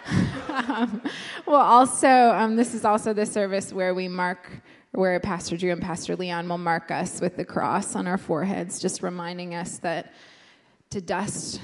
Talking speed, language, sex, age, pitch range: 170 wpm, English, female, 20-39, 180-220 Hz